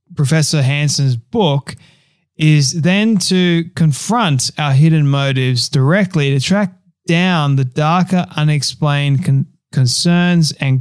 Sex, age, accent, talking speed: male, 30-49, Australian, 105 wpm